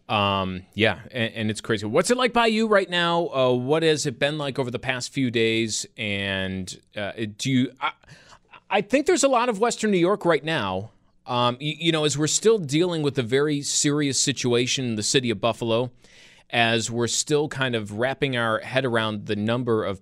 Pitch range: 110-150 Hz